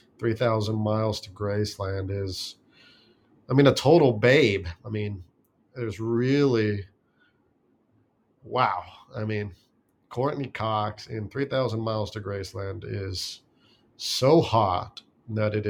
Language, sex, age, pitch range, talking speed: English, male, 40-59, 105-120 Hz, 120 wpm